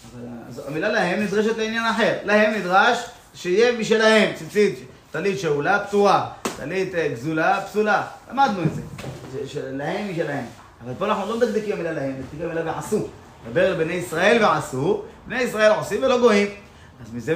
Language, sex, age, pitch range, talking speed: Hebrew, male, 30-49, 150-225 Hz, 155 wpm